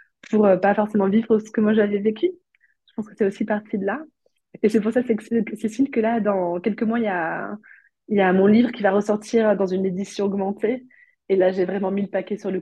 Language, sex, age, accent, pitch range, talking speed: French, female, 20-39, French, 195-225 Hz, 255 wpm